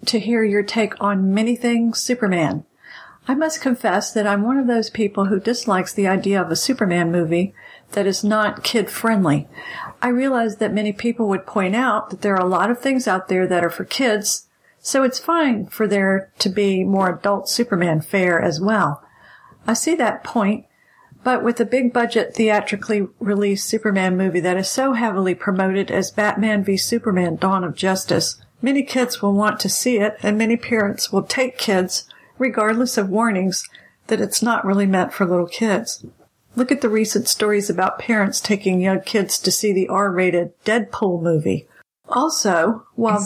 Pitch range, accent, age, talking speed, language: 190-230 Hz, American, 50-69, 180 wpm, English